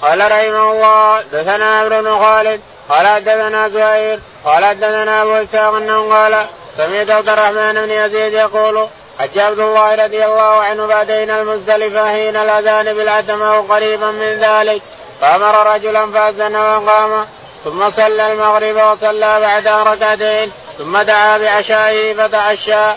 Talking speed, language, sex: 125 wpm, Arabic, male